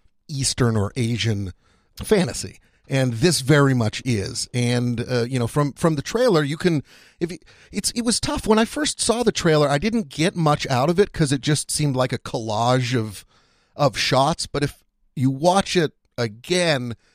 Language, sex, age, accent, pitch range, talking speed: English, male, 40-59, American, 115-150 Hz, 190 wpm